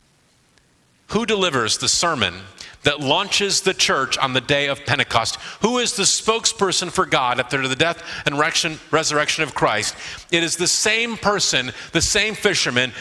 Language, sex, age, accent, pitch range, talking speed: English, male, 50-69, American, 140-180 Hz, 155 wpm